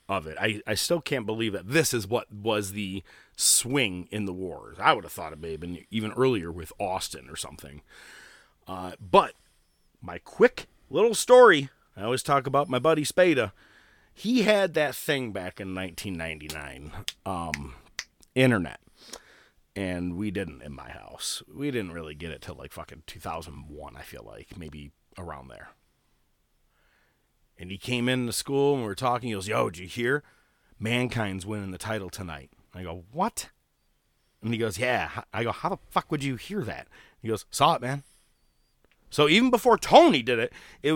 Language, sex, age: English, male, 30-49